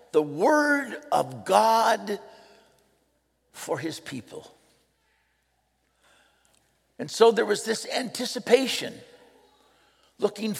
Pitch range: 195-285 Hz